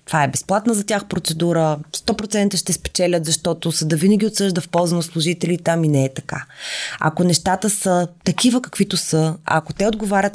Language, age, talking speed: Bulgarian, 20-39, 185 wpm